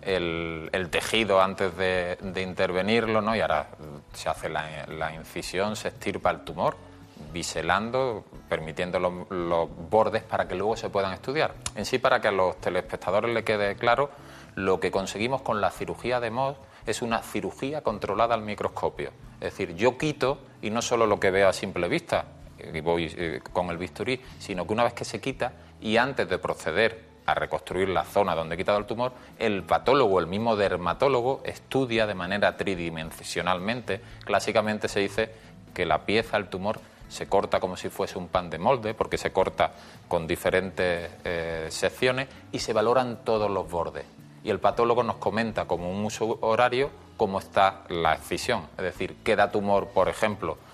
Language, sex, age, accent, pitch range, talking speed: Spanish, male, 30-49, Spanish, 90-115 Hz, 175 wpm